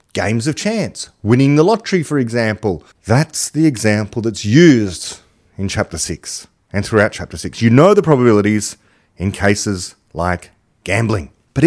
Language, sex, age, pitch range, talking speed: English, male, 30-49, 100-135 Hz, 150 wpm